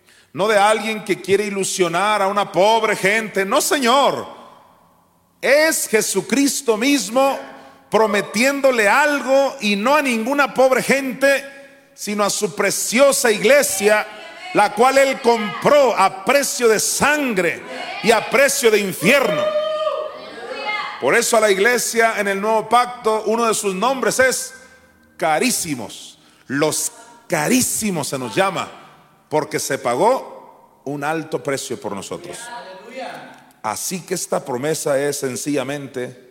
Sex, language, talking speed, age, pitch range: male, Spanish, 125 wpm, 40-59, 155-245 Hz